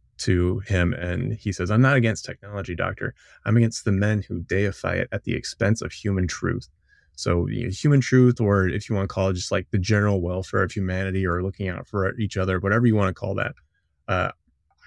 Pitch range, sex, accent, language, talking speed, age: 95-115 Hz, male, American, English, 215 wpm, 20-39